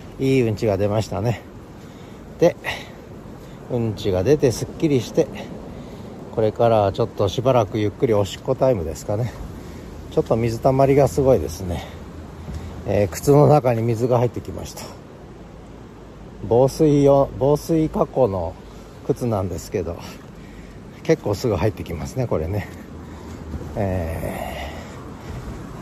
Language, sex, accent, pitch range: Japanese, male, native, 95-135 Hz